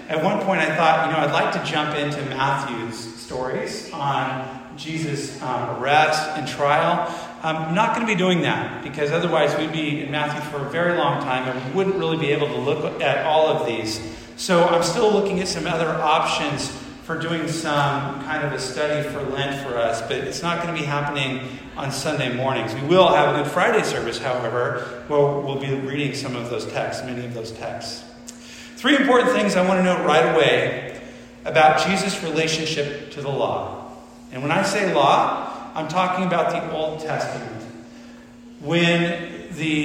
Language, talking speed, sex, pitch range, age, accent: English, 190 wpm, male, 130-165 Hz, 40-59, American